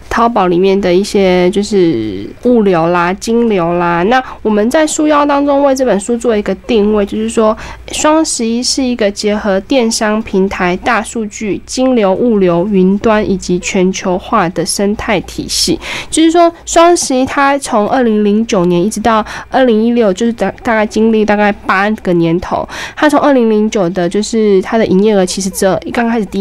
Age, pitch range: 20-39, 190-240 Hz